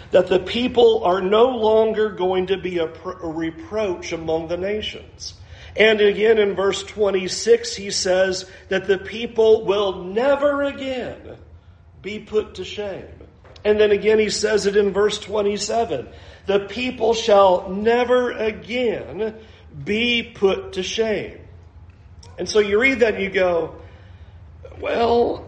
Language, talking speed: English, 135 wpm